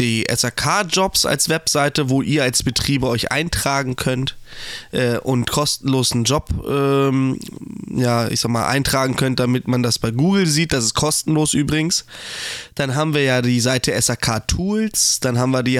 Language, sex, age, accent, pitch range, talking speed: German, male, 20-39, German, 125-160 Hz, 165 wpm